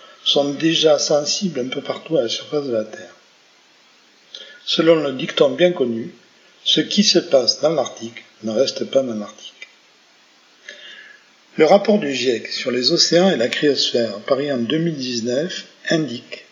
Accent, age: French, 50-69